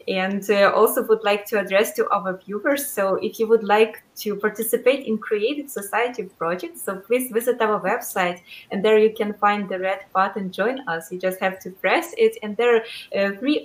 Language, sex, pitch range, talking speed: English, female, 190-230 Hz, 205 wpm